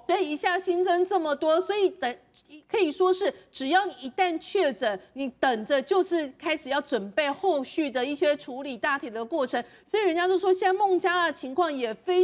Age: 40-59